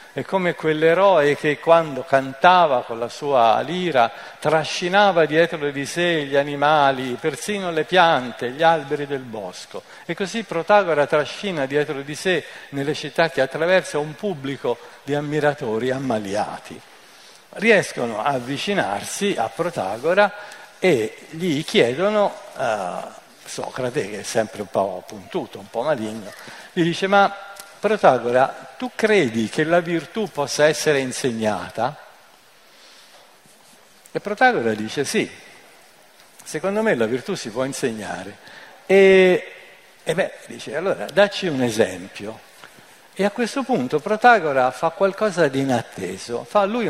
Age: 50-69